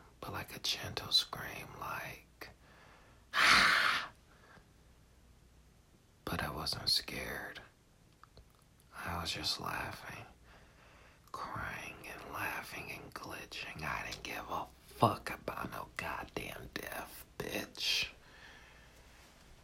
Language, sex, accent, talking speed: English, male, American, 90 wpm